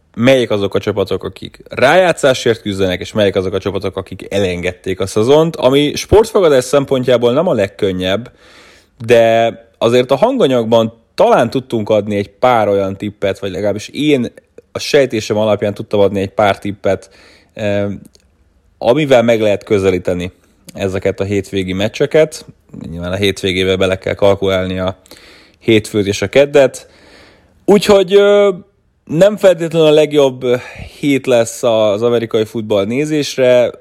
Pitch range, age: 100-125 Hz, 20-39